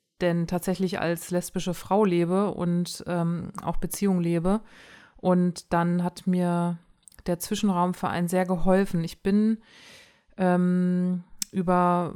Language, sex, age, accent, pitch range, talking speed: German, female, 20-39, German, 175-195 Hz, 115 wpm